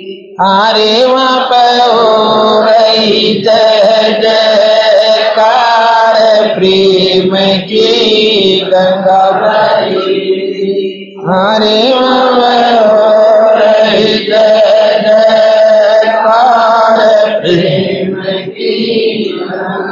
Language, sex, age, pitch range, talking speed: Hindi, male, 50-69, 190-225 Hz, 35 wpm